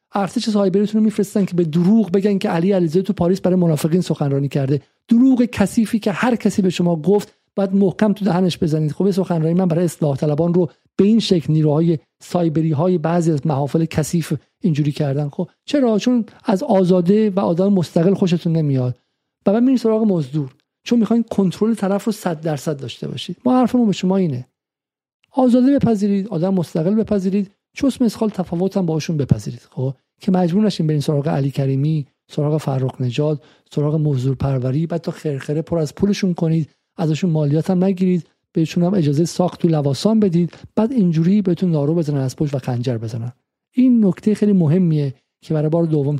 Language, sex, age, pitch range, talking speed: Persian, male, 50-69, 145-195 Hz, 180 wpm